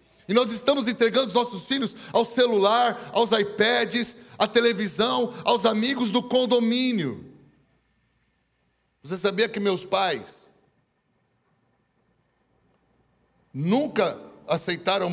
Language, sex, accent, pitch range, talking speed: English, male, Brazilian, 170-220 Hz, 95 wpm